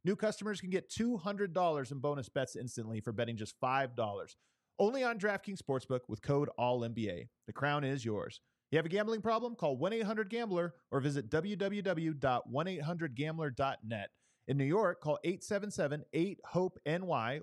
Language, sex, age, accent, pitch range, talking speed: English, male, 30-49, American, 135-185 Hz, 140 wpm